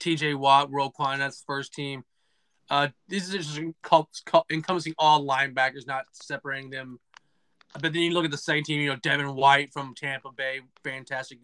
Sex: male